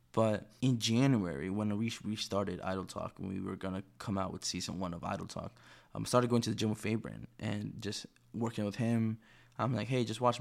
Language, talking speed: English, 225 wpm